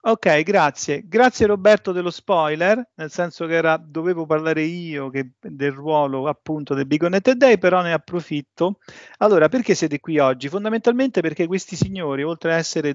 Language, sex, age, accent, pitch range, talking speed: Italian, male, 40-59, native, 145-185 Hz, 160 wpm